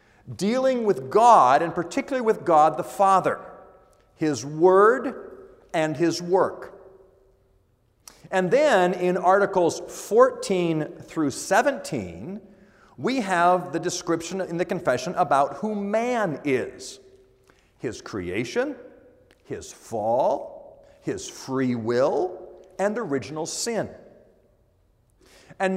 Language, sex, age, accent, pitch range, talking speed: English, male, 50-69, American, 160-205 Hz, 100 wpm